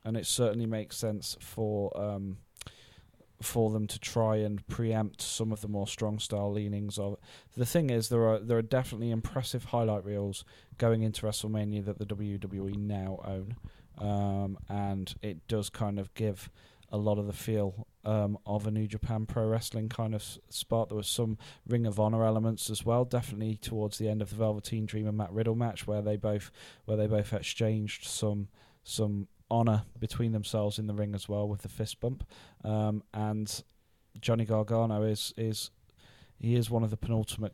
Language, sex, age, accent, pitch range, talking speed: English, male, 20-39, British, 100-115 Hz, 190 wpm